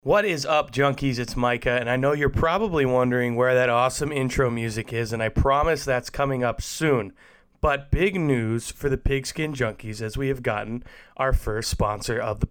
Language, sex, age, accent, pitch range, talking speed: English, male, 30-49, American, 110-140 Hz, 195 wpm